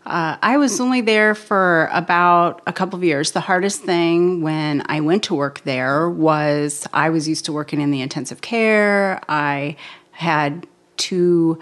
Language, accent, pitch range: English, American, 150-180 Hz